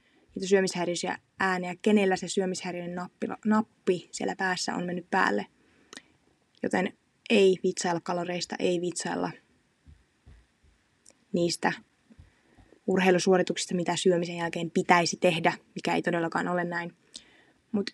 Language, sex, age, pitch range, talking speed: Finnish, female, 20-39, 175-200 Hz, 105 wpm